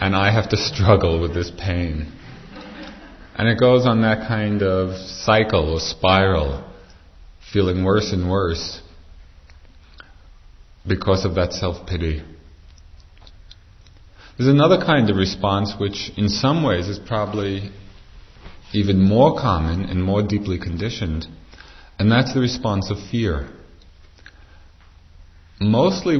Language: English